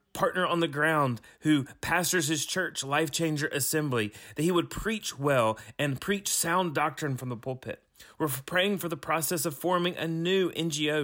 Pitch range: 130-165 Hz